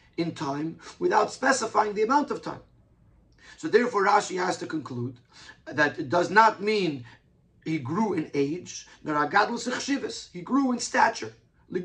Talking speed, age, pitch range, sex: 135 wpm, 40-59, 165-230 Hz, male